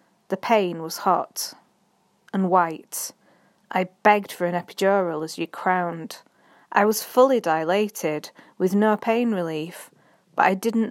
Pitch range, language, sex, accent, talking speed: 175-215 Hz, English, female, British, 140 wpm